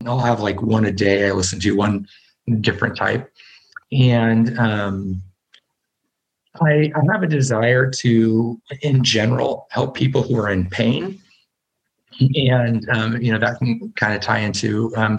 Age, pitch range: 30-49, 105-130 Hz